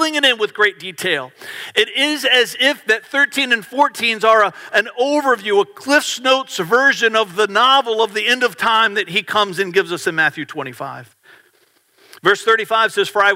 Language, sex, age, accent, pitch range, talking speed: English, male, 50-69, American, 155-235 Hz, 190 wpm